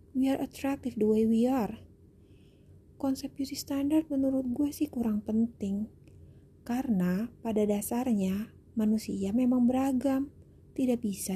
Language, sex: Indonesian, female